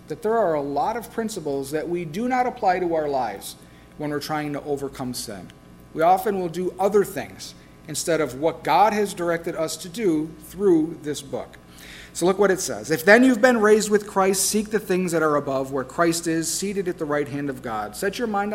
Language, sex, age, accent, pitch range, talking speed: English, male, 40-59, American, 135-205 Hz, 225 wpm